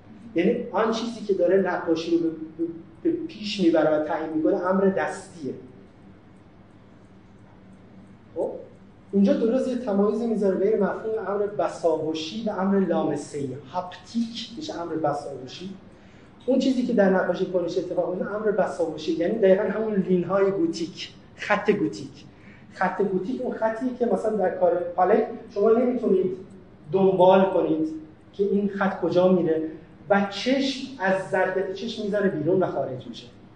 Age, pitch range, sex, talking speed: 30-49, 160-205 Hz, male, 135 wpm